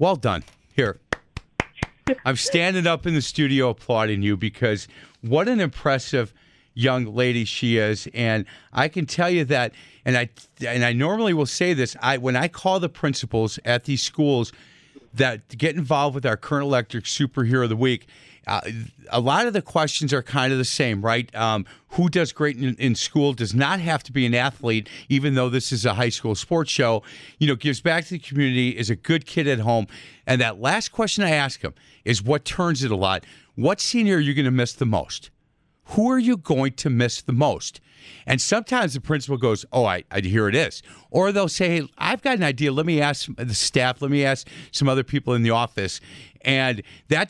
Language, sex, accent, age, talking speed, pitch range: English, male, American, 40-59, 210 wpm, 120-155 Hz